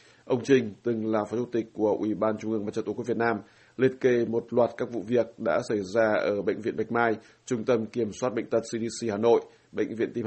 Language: Vietnamese